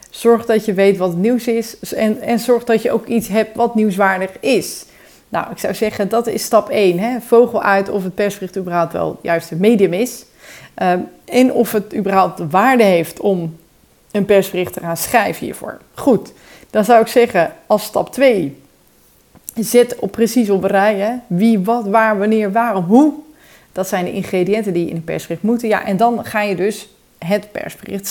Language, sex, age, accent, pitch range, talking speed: Dutch, female, 30-49, Dutch, 180-225 Hz, 190 wpm